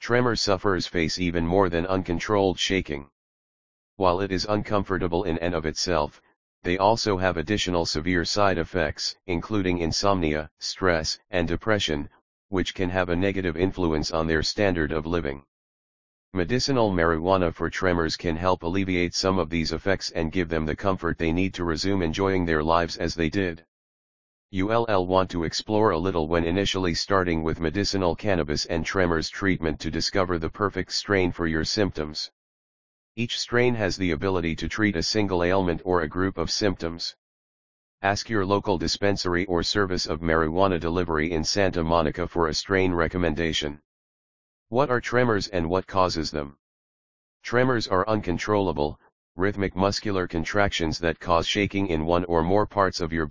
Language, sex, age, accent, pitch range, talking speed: English, male, 40-59, American, 80-100 Hz, 160 wpm